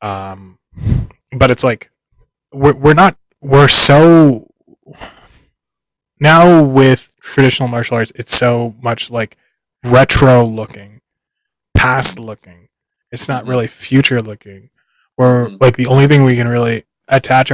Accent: American